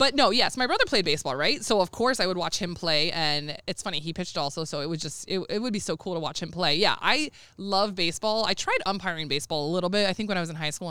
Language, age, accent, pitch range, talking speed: English, 20-39, American, 170-230 Hz, 305 wpm